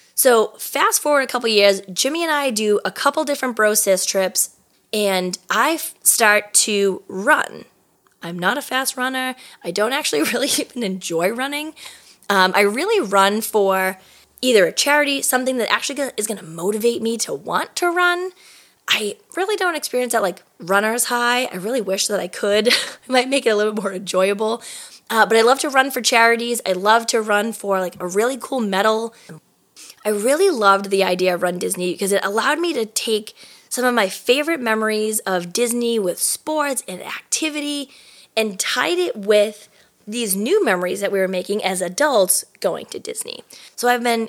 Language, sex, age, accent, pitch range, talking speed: English, female, 20-39, American, 200-275 Hz, 190 wpm